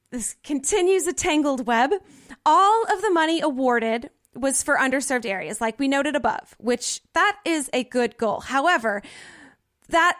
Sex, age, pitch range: female, 20-39, 240-320 Hz